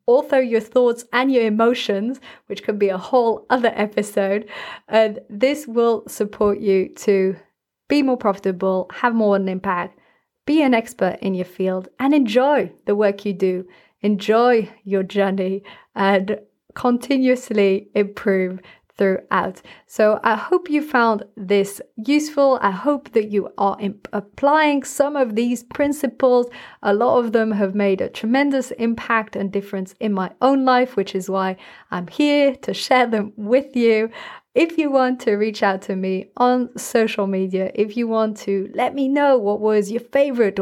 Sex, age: female, 30-49